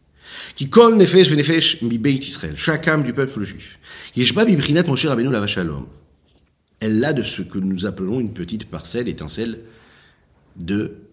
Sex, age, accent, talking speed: male, 50-69, French, 115 wpm